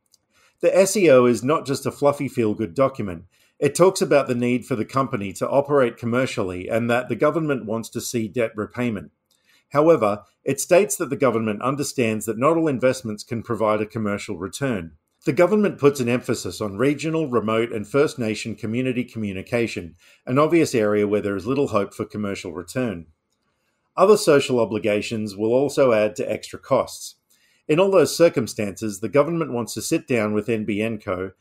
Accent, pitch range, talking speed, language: Australian, 105-135 Hz, 175 wpm, English